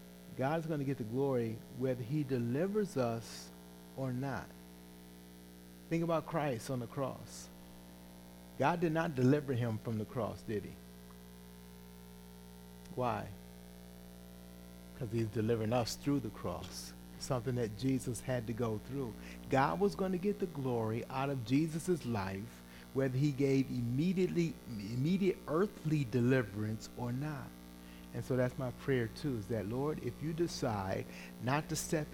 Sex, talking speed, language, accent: male, 145 wpm, English, American